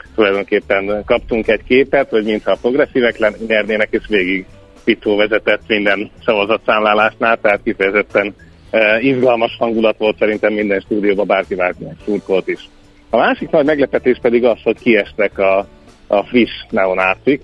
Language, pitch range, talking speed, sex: Hungarian, 95-110 Hz, 140 wpm, male